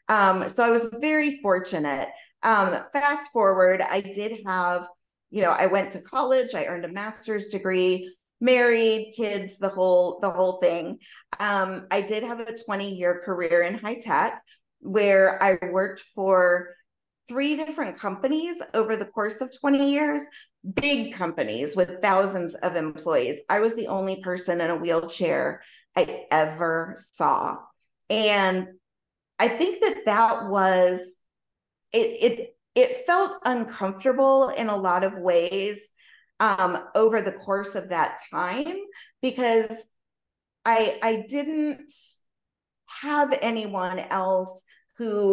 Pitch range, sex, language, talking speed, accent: 185-235 Hz, female, English, 135 wpm, American